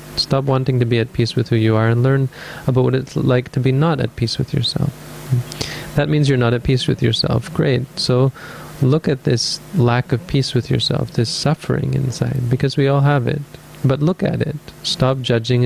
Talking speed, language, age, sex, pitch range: 210 wpm, English, 30-49, male, 120-145 Hz